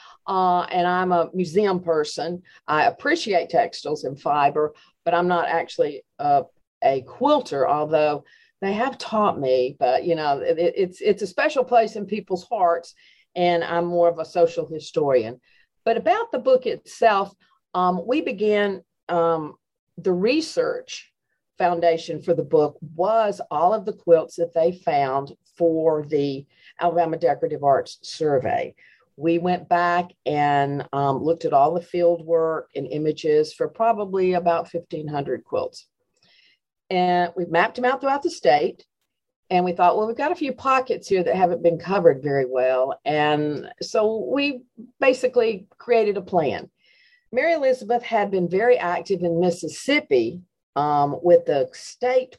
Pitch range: 165-230 Hz